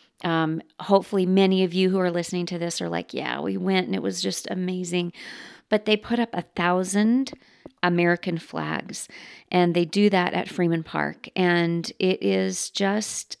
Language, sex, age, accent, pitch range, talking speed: English, female, 40-59, American, 170-200 Hz, 175 wpm